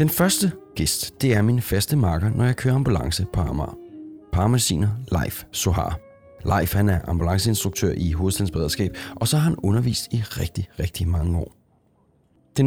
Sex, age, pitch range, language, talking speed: male, 30-49, 90-115 Hz, Danish, 160 wpm